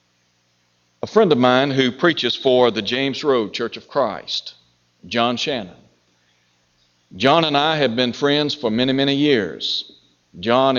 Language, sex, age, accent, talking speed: English, male, 60-79, American, 145 wpm